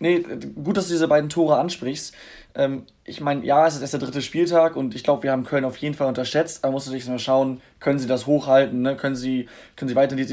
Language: German